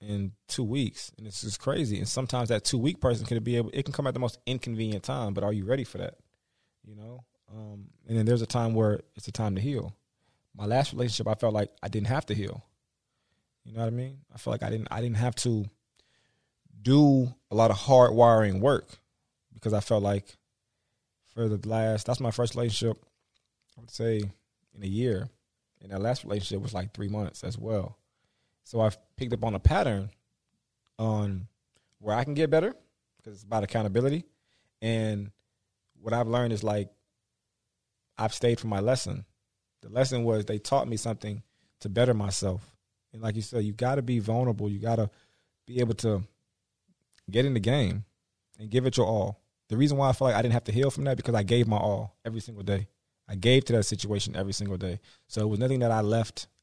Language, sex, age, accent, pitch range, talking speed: English, male, 20-39, American, 105-120 Hz, 215 wpm